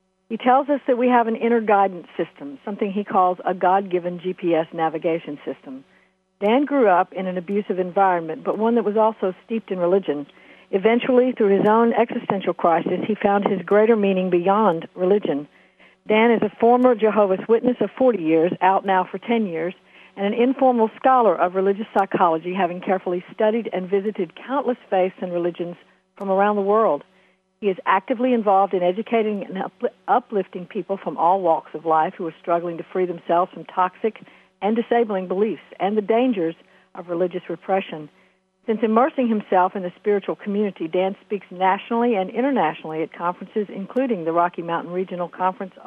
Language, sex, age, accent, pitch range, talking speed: English, female, 60-79, American, 180-220 Hz, 170 wpm